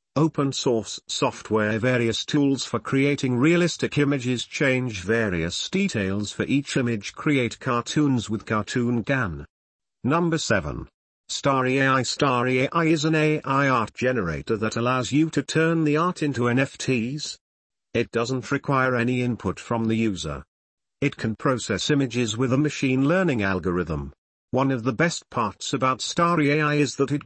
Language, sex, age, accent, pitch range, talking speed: English, male, 50-69, British, 115-145 Hz, 150 wpm